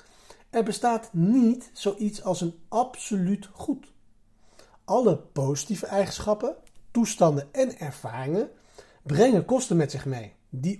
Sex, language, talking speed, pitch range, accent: male, Dutch, 110 wpm, 140-225 Hz, Dutch